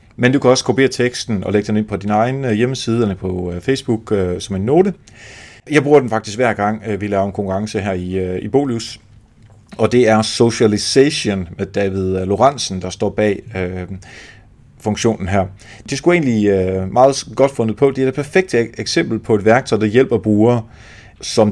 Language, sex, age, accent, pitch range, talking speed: Danish, male, 30-49, native, 105-130 Hz, 185 wpm